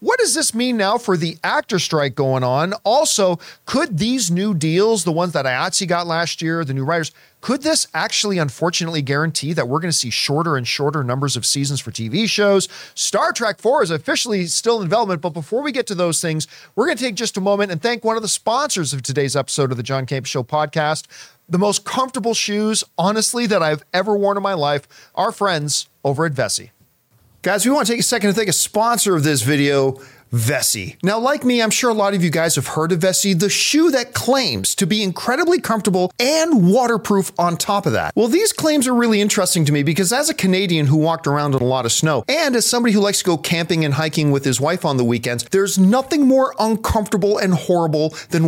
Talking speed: 230 wpm